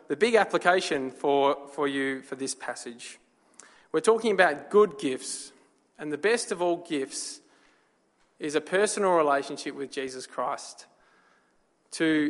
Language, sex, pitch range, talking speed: English, male, 140-190 Hz, 135 wpm